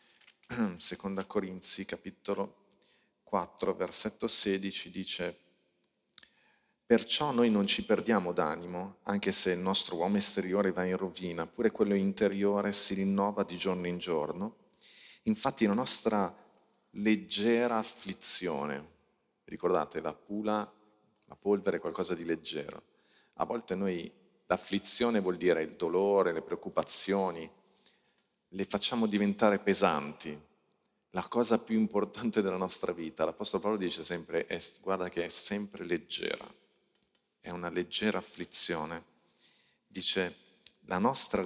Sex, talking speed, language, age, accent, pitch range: male, 120 wpm, Italian, 40-59, native, 90-105 Hz